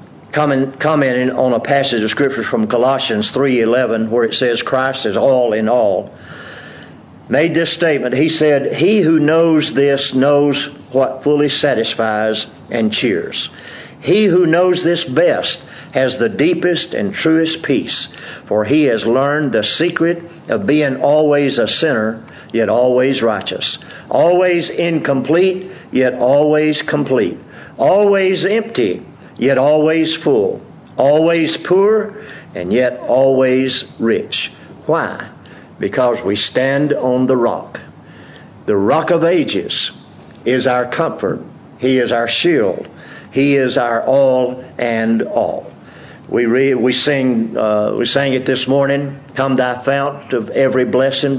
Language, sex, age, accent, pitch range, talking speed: English, male, 50-69, American, 125-160 Hz, 135 wpm